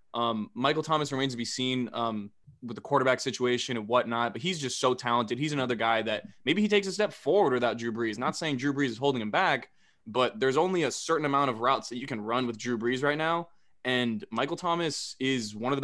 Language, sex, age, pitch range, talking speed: English, male, 20-39, 115-145 Hz, 245 wpm